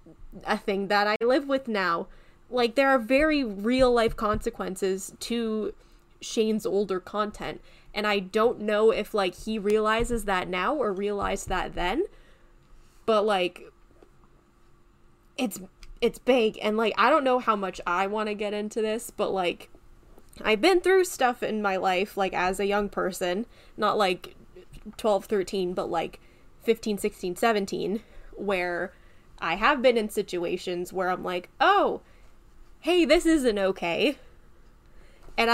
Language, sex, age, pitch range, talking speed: English, female, 10-29, 190-235 Hz, 150 wpm